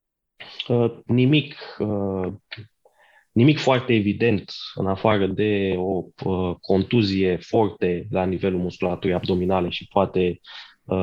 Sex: male